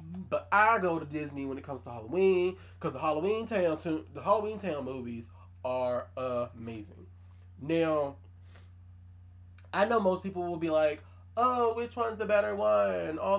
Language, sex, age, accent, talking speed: English, male, 20-39, American, 155 wpm